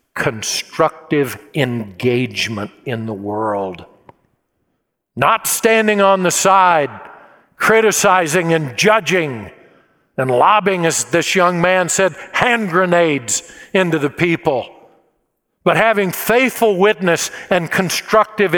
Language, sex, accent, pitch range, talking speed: English, male, American, 165-205 Hz, 100 wpm